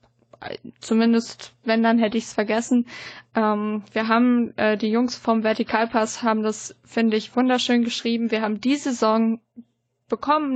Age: 20-39